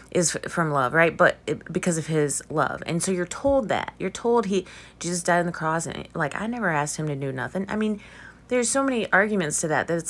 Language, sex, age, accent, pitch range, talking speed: English, female, 30-49, American, 135-180 Hz, 245 wpm